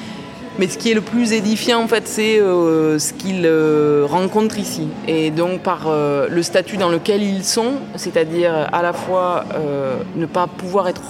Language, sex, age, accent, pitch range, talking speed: French, female, 20-39, French, 165-215 Hz, 190 wpm